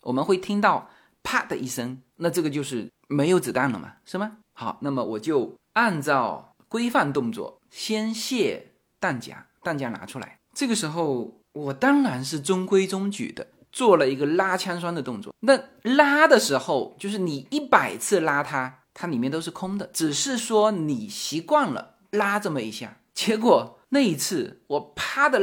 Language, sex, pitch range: Chinese, male, 160-255 Hz